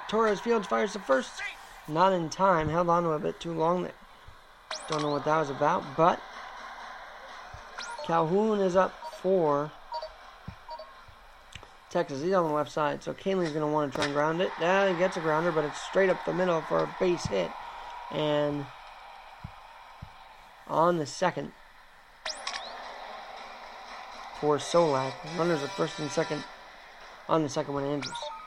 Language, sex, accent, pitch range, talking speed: English, male, American, 155-195 Hz, 155 wpm